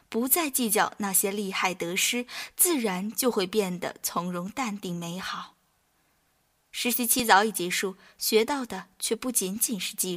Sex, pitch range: female, 185-240 Hz